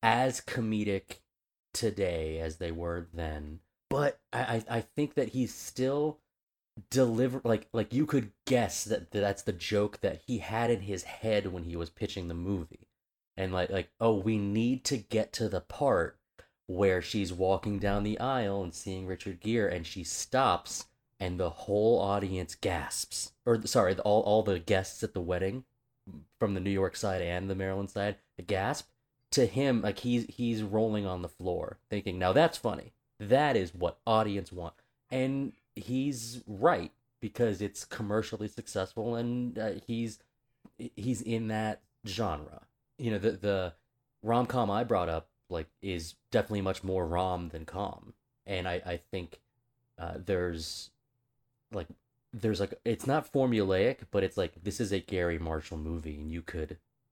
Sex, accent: male, American